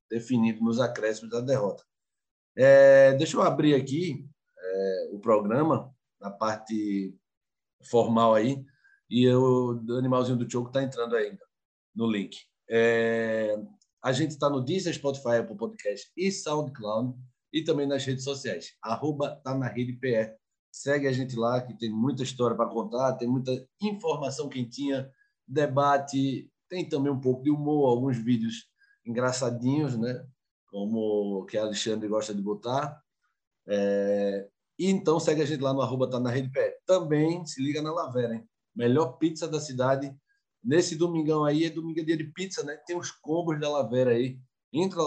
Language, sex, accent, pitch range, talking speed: Portuguese, male, Brazilian, 120-155 Hz, 155 wpm